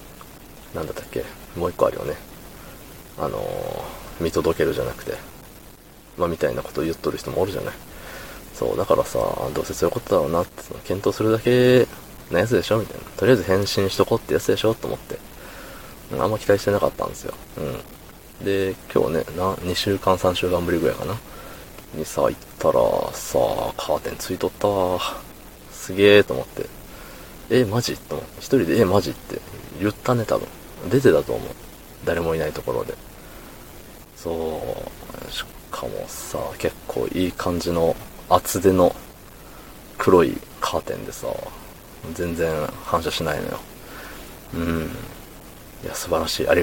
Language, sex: Japanese, male